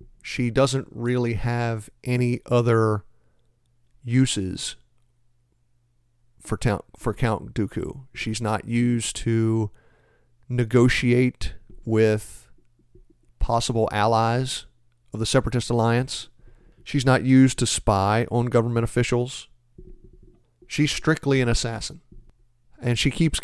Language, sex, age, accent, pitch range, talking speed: English, male, 40-59, American, 115-125 Hz, 95 wpm